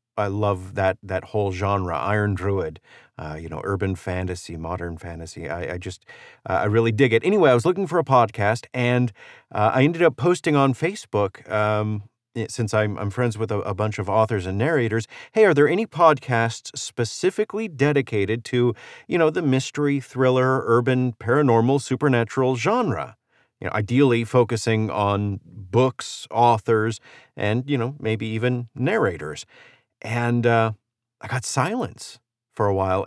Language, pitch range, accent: English, 100-130 Hz, American